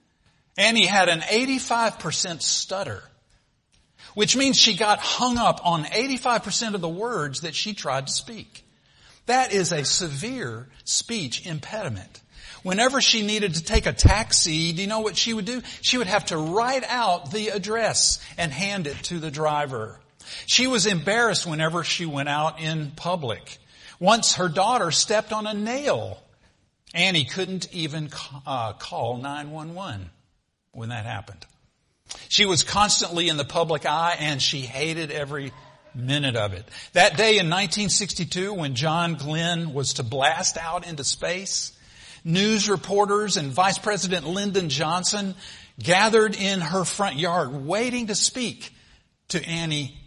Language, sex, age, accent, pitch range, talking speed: English, male, 50-69, American, 150-215 Hz, 150 wpm